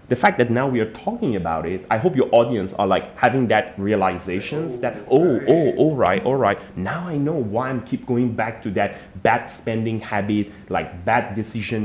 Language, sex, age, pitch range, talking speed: English, male, 30-49, 105-150 Hz, 210 wpm